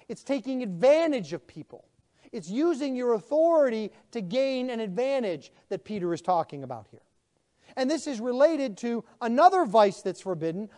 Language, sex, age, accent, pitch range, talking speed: English, male, 40-59, American, 200-265 Hz, 155 wpm